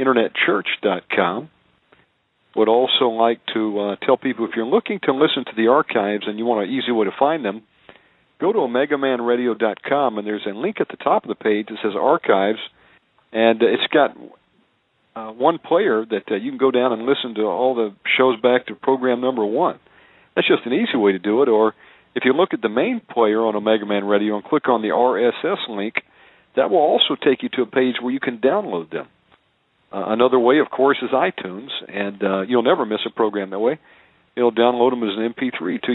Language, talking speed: English, 210 wpm